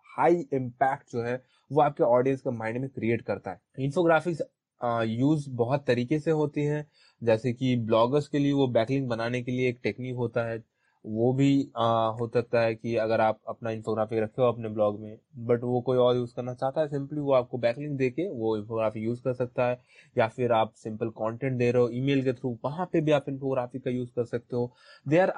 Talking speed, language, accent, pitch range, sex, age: 220 wpm, Hindi, native, 120-145 Hz, male, 20-39